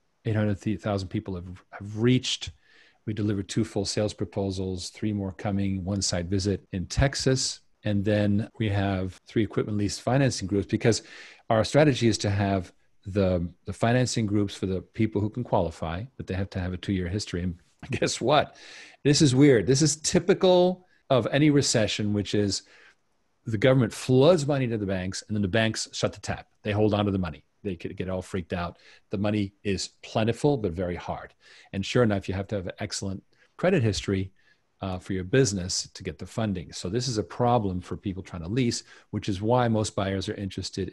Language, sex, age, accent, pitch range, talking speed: English, male, 40-59, American, 95-115 Hz, 195 wpm